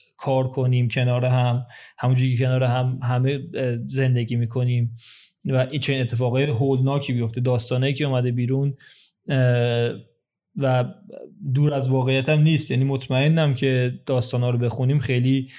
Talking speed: 135 wpm